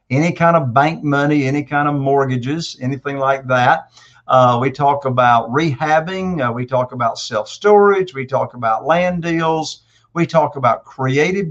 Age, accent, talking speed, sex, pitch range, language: 50-69, American, 165 wpm, male, 130-170 Hz, English